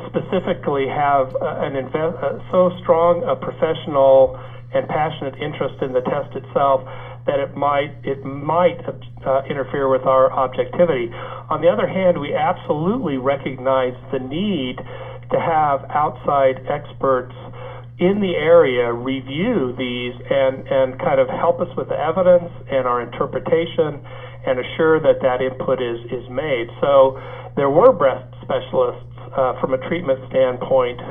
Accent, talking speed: American, 145 wpm